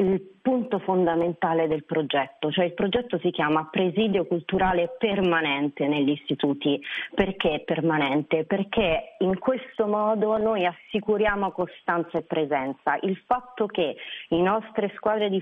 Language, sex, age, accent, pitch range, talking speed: Italian, female, 30-49, native, 160-195 Hz, 130 wpm